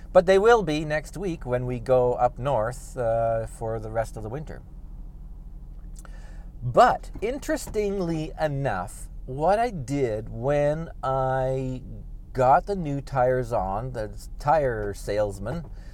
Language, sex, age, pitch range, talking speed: English, male, 40-59, 100-150 Hz, 130 wpm